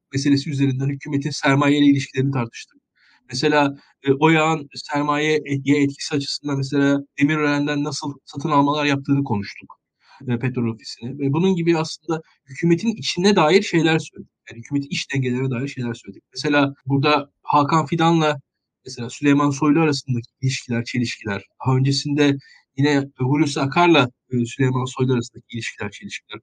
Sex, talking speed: male, 125 wpm